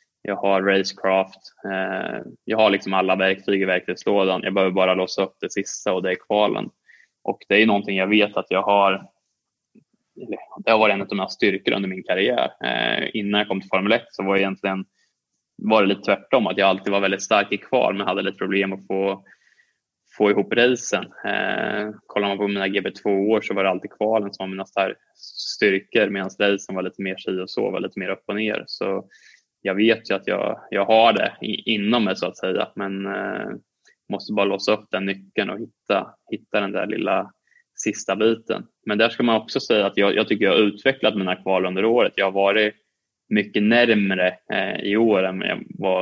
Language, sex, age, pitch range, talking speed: Swedish, male, 20-39, 95-105 Hz, 205 wpm